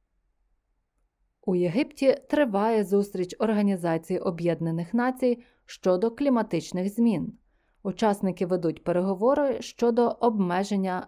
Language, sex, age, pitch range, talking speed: Ukrainian, female, 20-39, 180-240 Hz, 80 wpm